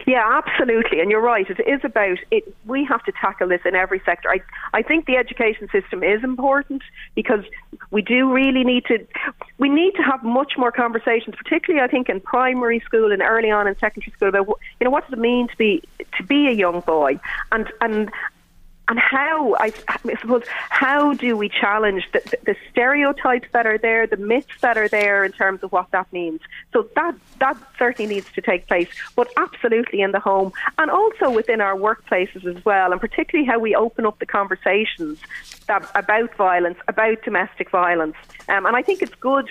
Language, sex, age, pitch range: English, female, 40-59, 205-270 Hz